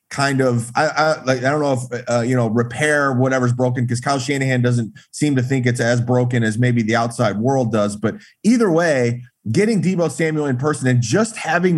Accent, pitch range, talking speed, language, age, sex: American, 120-145 Hz, 215 wpm, English, 30-49, male